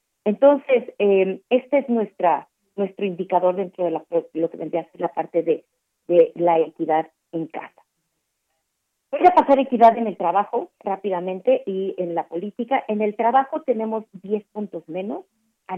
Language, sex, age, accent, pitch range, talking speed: Spanish, female, 40-59, Mexican, 175-230 Hz, 165 wpm